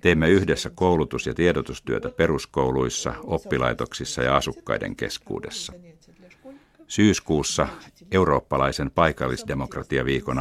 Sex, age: male, 60-79